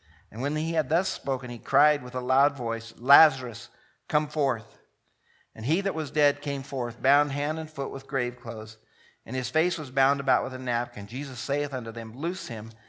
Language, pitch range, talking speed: English, 120-145 Hz, 205 wpm